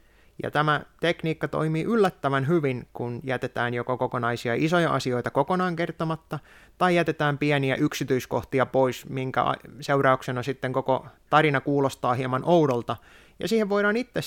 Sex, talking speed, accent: male, 130 wpm, native